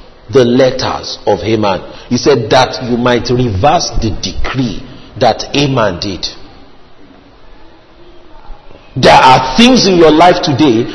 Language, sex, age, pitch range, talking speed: English, male, 50-69, 125-165 Hz, 120 wpm